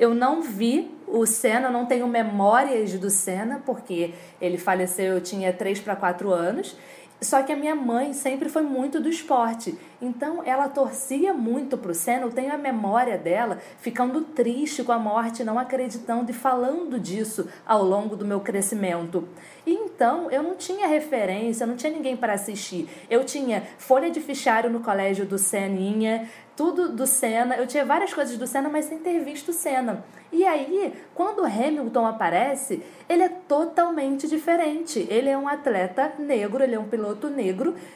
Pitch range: 220-300 Hz